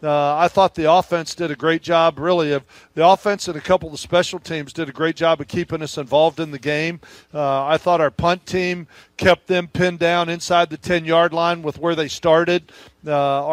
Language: English